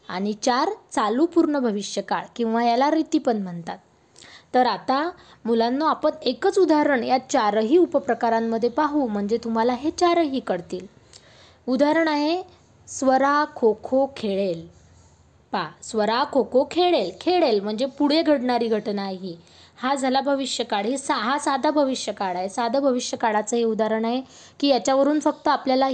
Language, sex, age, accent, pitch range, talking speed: Marathi, female, 20-39, native, 225-295 Hz, 140 wpm